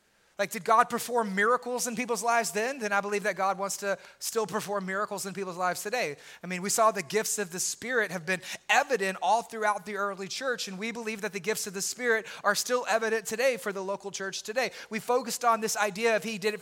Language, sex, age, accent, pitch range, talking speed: English, male, 30-49, American, 205-250 Hz, 240 wpm